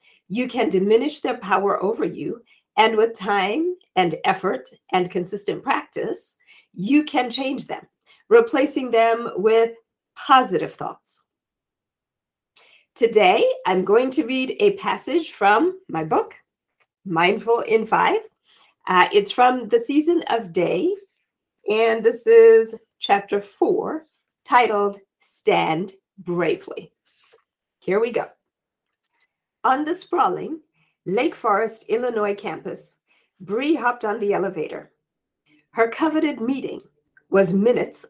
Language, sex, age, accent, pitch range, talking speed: English, female, 40-59, American, 205-345 Hz, 115 wpm